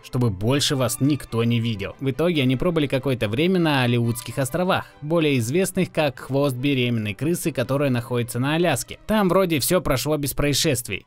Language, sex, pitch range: Russian, male, 125-170 Hz